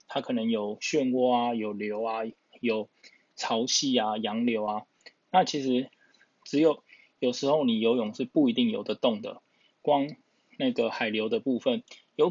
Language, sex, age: Chinese, male, 20-39